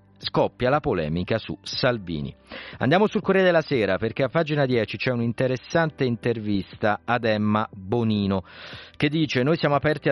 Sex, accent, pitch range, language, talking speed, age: male, native, 105-140 Hz, Italian, 150 wpm, 40-59